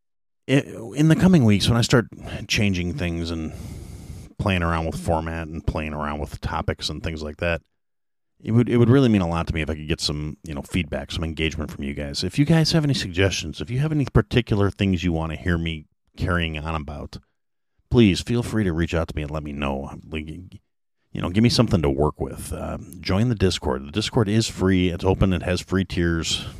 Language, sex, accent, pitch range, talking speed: English, male, American, 80-100 Hz, 225 wpm